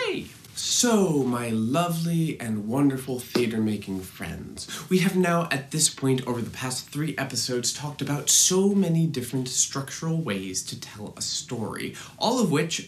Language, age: English, 30-49